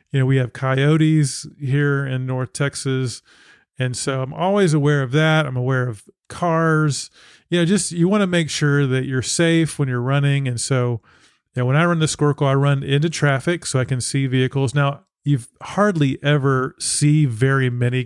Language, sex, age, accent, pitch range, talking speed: English, male, 40-59, American, 125-150 Hz, 190 wpm